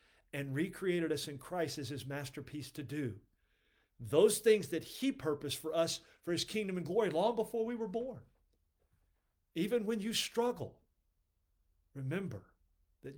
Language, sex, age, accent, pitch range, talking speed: English, male, 50-69, American, 125-180 Hz, 150 wpm